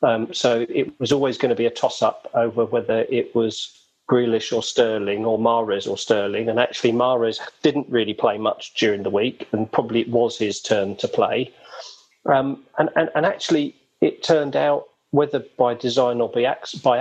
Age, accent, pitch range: 40-59, British, 115-145 Hz